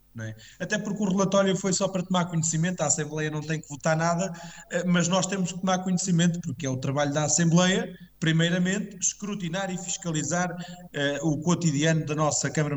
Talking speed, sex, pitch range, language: 180 wpm, male, 130-170 Hz, Portuguese